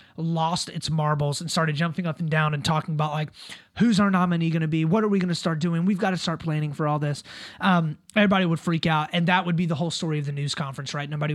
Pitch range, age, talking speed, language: 160-200 Hz, 30-49, 275 wpm, English